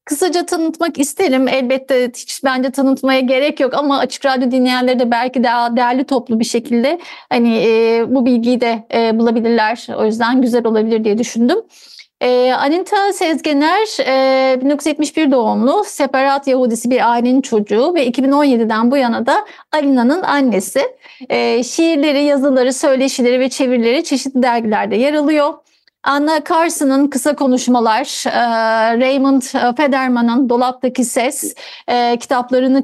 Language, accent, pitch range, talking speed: Turkish, native, 240-285 Hz, 125 wpm